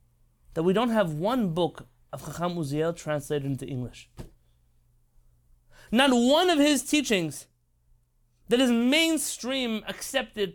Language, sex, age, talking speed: English, male, 30-49, 120 wpm